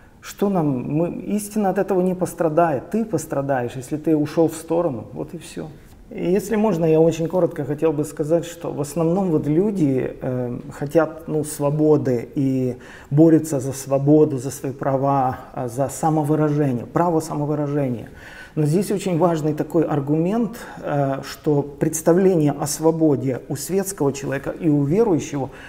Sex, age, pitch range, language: male, 40-59, 150-185 Hz, Russian